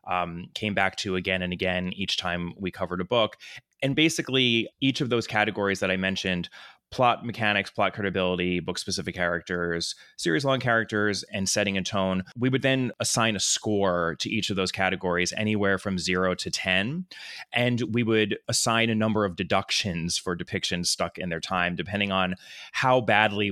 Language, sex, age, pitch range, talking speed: English, male, 30-49, 95-110 Hz, 180 wpm